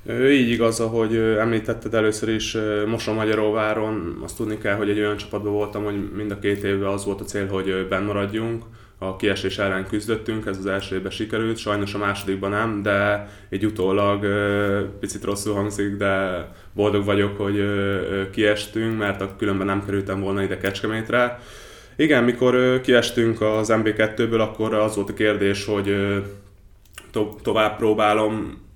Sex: male